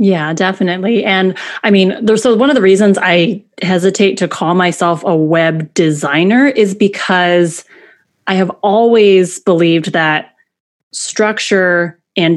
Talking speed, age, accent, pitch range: 135 wpm, 30-49, American, 170-215 Hz